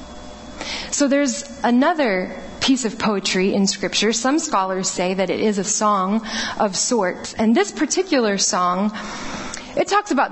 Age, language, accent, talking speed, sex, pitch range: 30-49, English, American, 145 wpm, female, 205-280 Hz